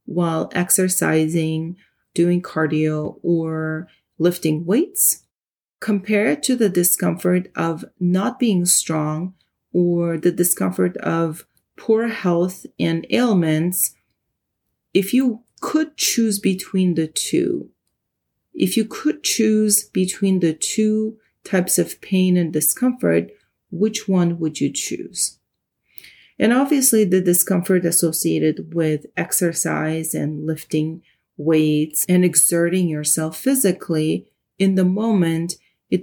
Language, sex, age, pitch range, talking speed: English, female, 30-49, 160-205 Hz, 110 wpm